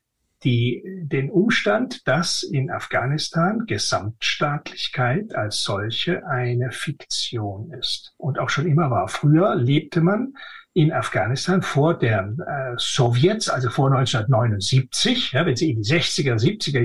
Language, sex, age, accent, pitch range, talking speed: German, male, 60-79, German, 125-170 Hz, 130 wpm